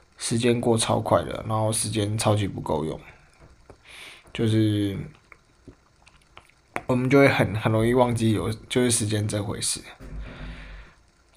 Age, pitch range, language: 20-39, 110-135 Hz, Chinese